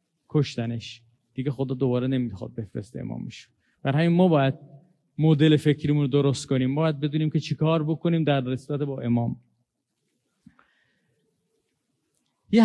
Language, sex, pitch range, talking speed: Persian, male, 130-160 Hz, 120 wpm